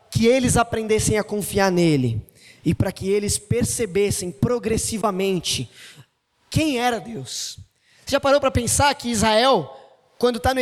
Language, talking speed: Portuguese, 140 wpm